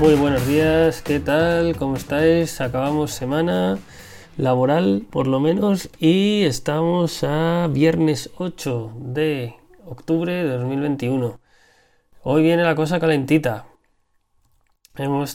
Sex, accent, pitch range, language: male, Spanish, 125-160 Hz, Spanish